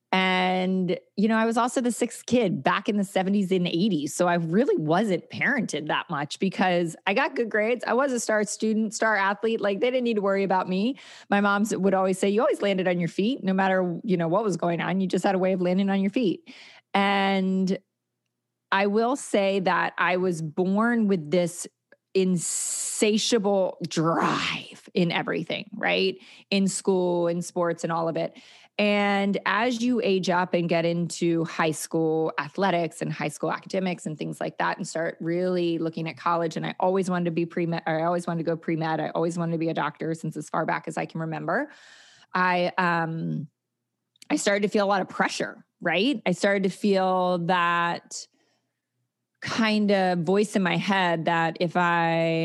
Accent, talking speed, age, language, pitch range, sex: American, 200 wpm, 30-49, English, 165-200 Hz, female